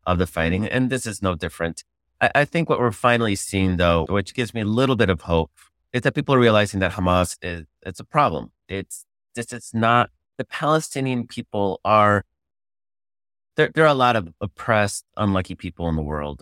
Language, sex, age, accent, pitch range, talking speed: English, male, 30-49, American, 85-110 Hz, 205 wpm